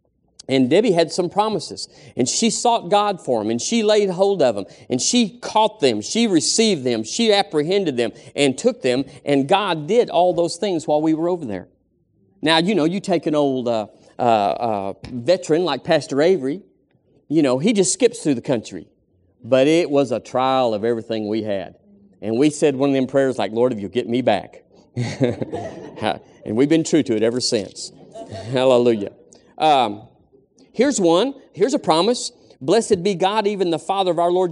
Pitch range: 130-200 Hz